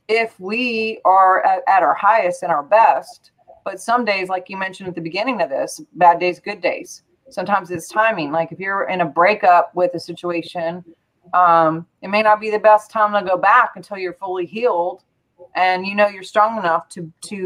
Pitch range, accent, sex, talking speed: 175-210 Hz, American, female, 205 wpm